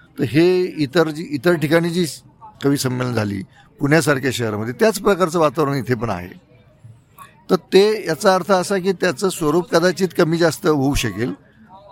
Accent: native